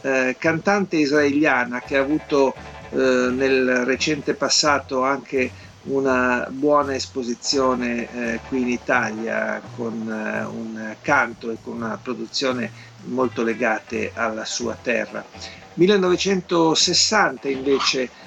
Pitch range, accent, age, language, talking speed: 125-150 Hz, native, 50-69, Italian, 110 wpm